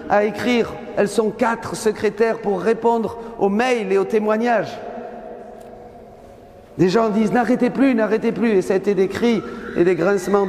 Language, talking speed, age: French, 165 wpm, 50-69